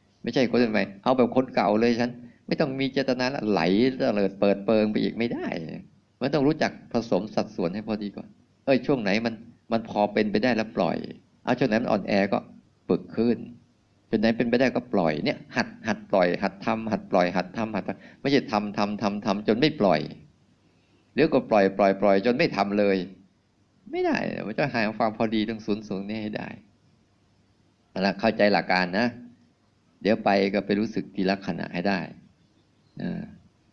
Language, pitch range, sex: Thai, 100-115 Hz, male